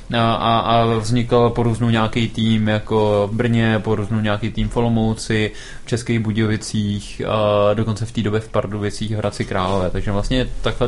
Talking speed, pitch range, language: 170 wpm, 110-125 Hz, Czech